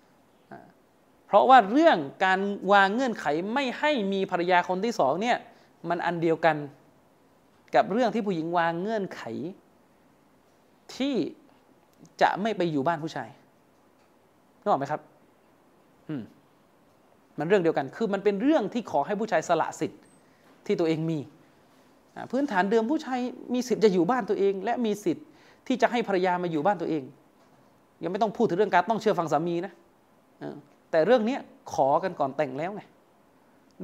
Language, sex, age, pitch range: Thai, male, 30-49, 165-225 Hz